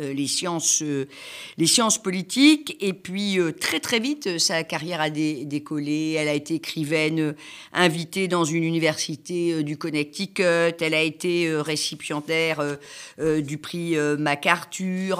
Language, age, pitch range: French, 50-69, 150-205 Hz